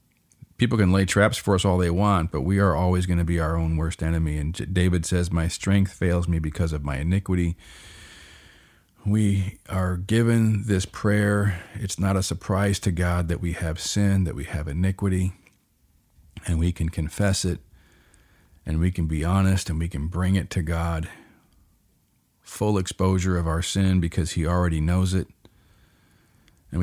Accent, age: American, 40-59